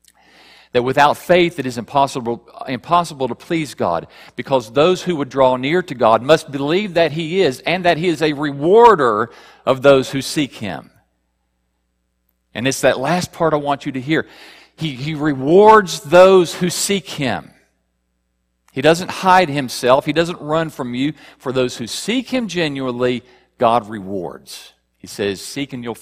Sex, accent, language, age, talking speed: male, American, English, 50-69, 170 wpm